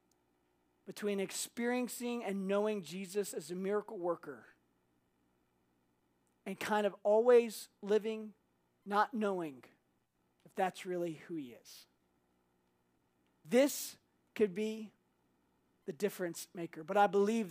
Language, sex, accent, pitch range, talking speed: English, male, American, 195-265 Hz, 105 wpm